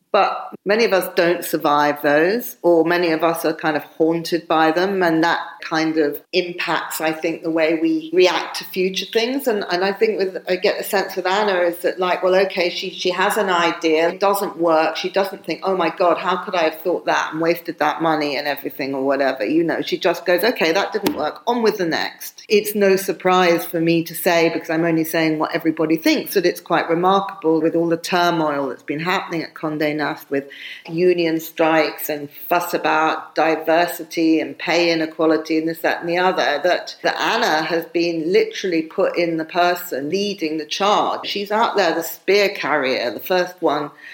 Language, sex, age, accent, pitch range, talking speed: English, female, 40-59, British, 160-190 Hz, 210 wpm